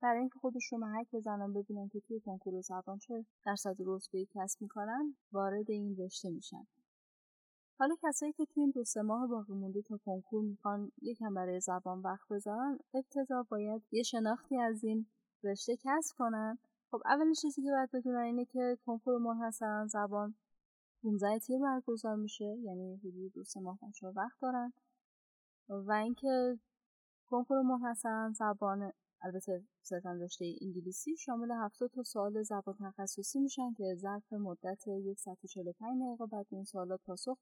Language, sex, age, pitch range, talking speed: Persian, female, 10-29, 195-245 Hz, 155 wpm